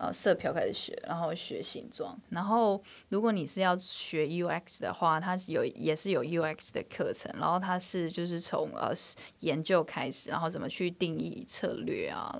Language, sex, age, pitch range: Chinese, female, 20-39, 160-185 Hz